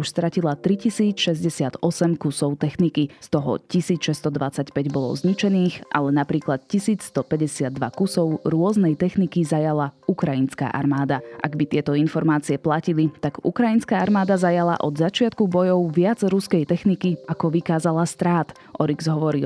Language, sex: Slovak, female